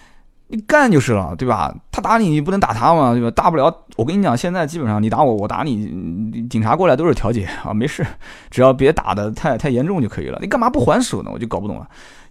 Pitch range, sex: 105-150 Hz, male